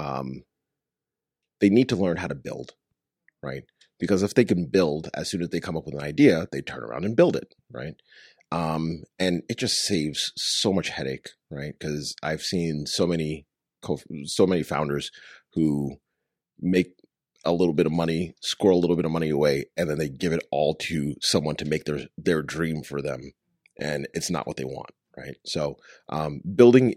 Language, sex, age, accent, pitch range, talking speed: English, male, 30-49, American, 75-95 Hz, 195 wpm